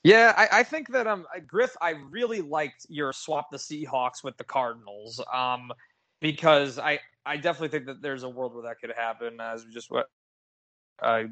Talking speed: 190 wpm